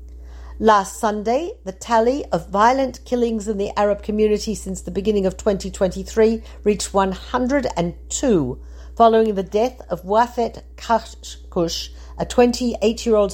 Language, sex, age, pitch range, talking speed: Hebrew, female, 50-69, 175-225 Hz, 115 wpm